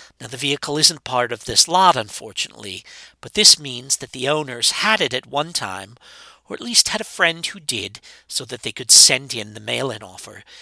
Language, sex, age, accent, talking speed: English, male, 50-69, American, 210 wpm